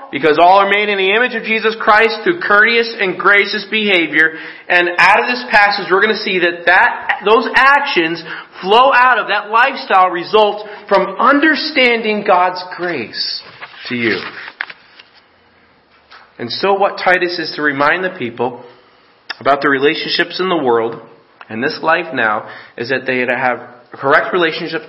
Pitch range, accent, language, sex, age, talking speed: 145-210 Hz, American, English, male, 30-49, 160 wpm